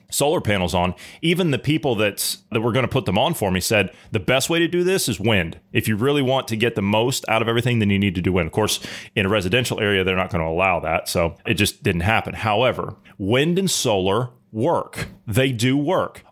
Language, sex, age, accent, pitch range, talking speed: English, male, 30-49, American, 105-140 Hz, 245 wpm